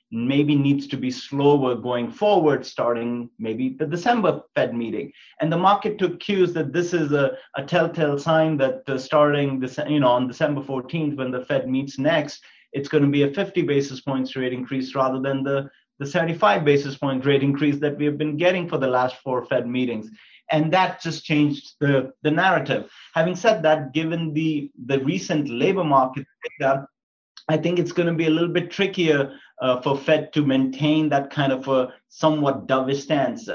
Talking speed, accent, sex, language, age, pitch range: 195 wpm, Indian, male, English, 30-49, 130-155 Hz